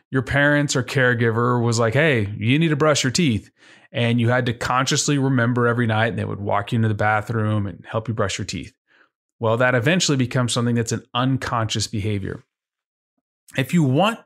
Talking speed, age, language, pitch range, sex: 200 wpm, 30-49, English, 115-150 Hz, male